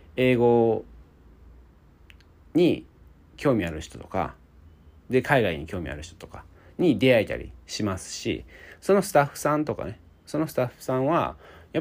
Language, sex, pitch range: Japanese, male, 75-120 Hz